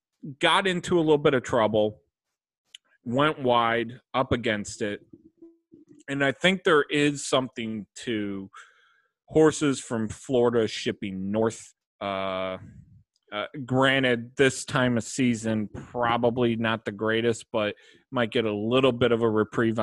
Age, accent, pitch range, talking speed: 30-49, American, 105-140 Hz, 135 wpm